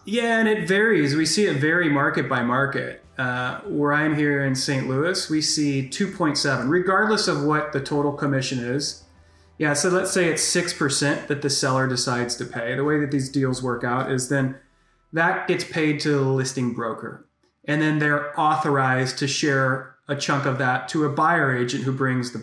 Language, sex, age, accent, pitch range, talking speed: English, male, 30-49, American, 130-155 Hz, 195 wpm